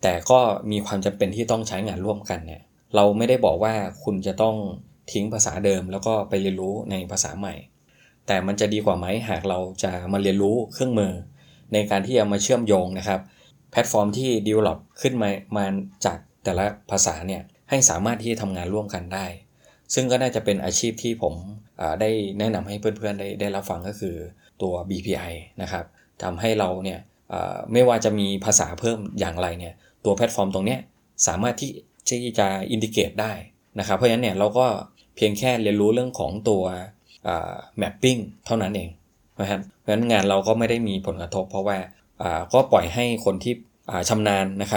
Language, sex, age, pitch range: Thai, male, 20-39, 95-110 Hz